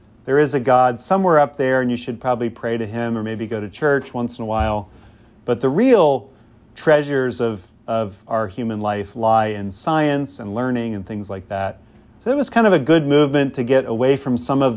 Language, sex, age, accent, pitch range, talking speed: English, male, 40-59, American, 110-140 Hz, 225 wpm